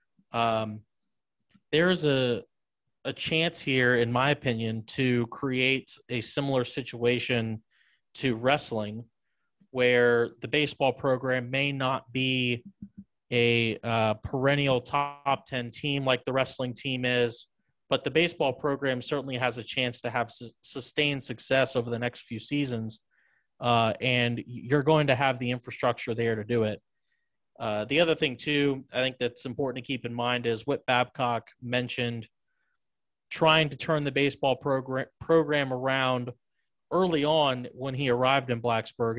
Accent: American